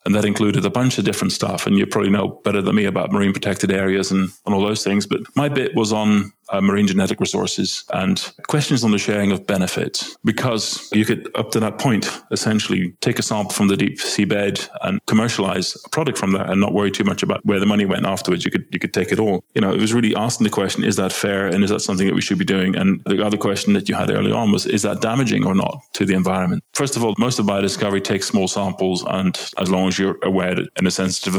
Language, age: English, 20-39